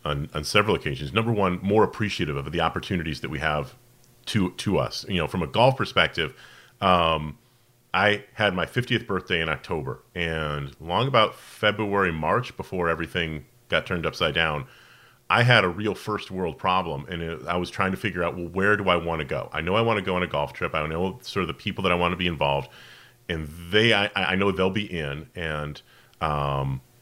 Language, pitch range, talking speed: English, 80-105 Hz, 210 wpm